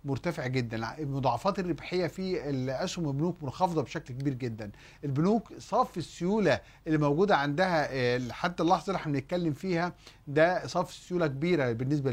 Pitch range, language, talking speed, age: 130-165 Hz, Arabic, 135 wpm, 40-59